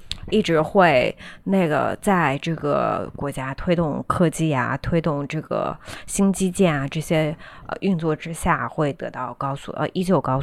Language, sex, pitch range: Chinese, female, 155-195 Hz